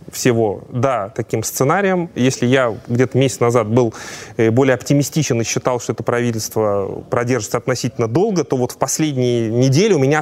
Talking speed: 160 wpm